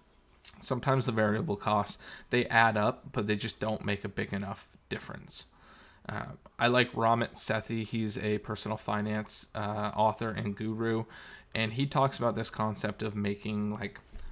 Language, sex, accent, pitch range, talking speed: English, male, American, 105-120 Hz, 160 wpm